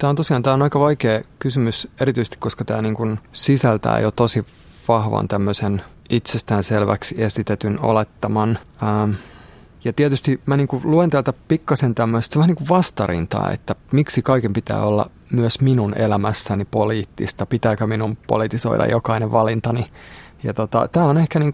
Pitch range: 110-135 Hz